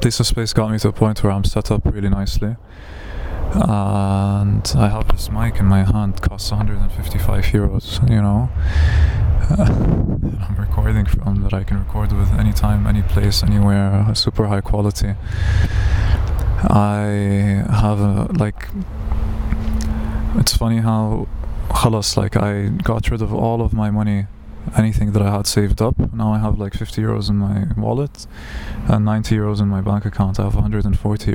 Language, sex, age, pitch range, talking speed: English, male, 20-39, 100-110 Hz, 160 wpm